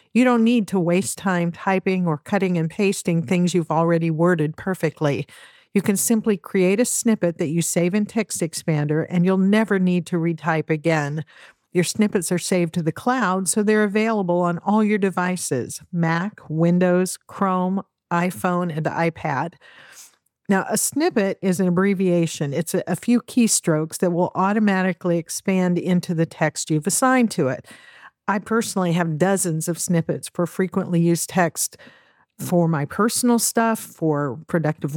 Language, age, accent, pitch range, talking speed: English, 50-69, American, 165-200 Hz, 160 wpm